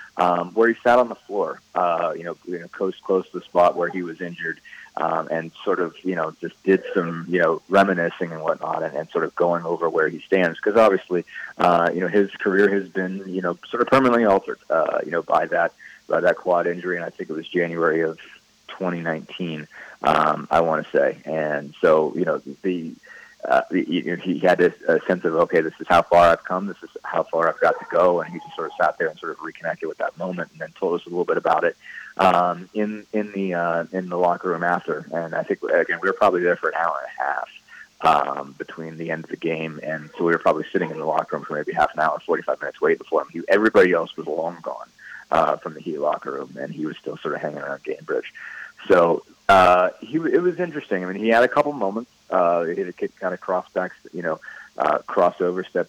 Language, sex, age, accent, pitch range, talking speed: English, male, 30-49, American, 85-110 Hz, 250 wpm